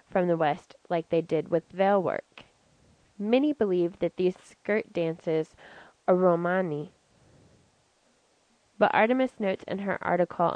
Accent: American